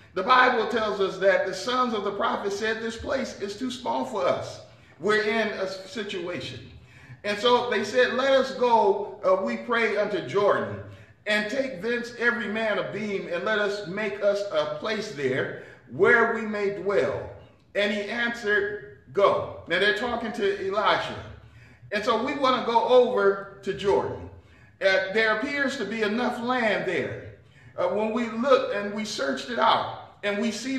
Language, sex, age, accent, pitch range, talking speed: English, male, 40-59, American, 195-240 Hz, 175 wpm